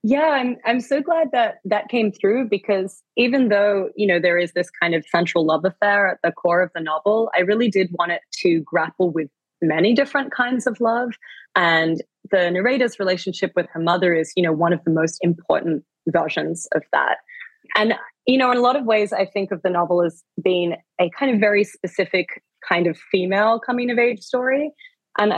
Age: 20-39